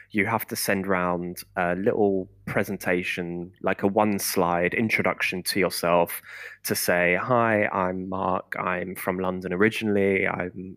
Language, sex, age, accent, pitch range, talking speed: English, male, 20-39, British, 90-100 Hz, 135 wpm